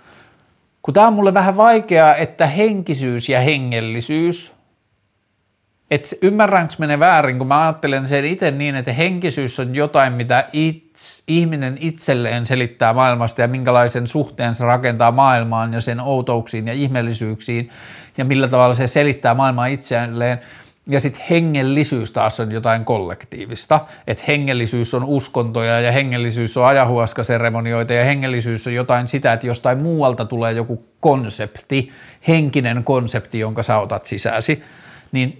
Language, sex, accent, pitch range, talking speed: Finnish, male, native, 115-145 Hz, 135 wpm